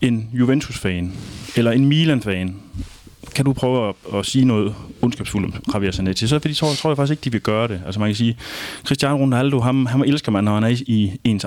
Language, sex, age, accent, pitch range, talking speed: Danish, male, 30-49, native, 100-125 Hz, 220 wpm